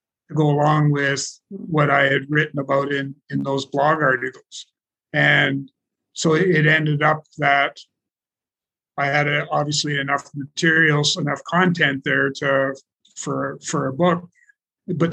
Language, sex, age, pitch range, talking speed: English, male, 50-69, 140-160 Hz, 135 wpm